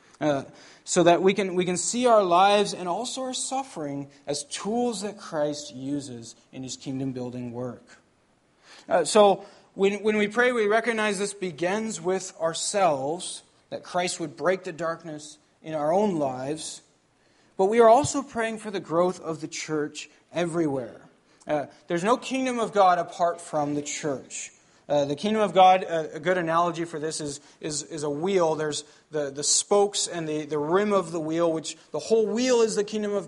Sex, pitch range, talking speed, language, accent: male, 150-200 Hz, 185 wpm, English, American